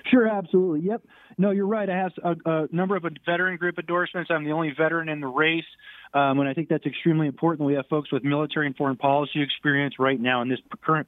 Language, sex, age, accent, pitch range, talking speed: English, male, 30-49, American, 135-155 Hz, 235 wpm